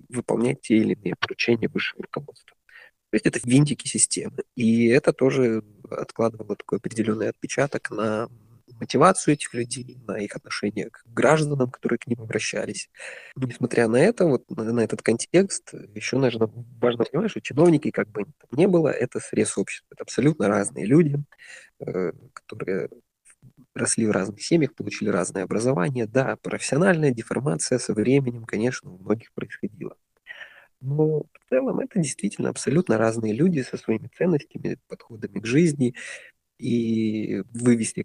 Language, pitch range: Russian, 110-140 Hz